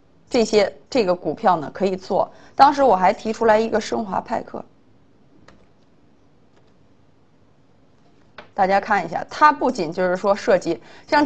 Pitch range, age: 175-225 Hz, 30-49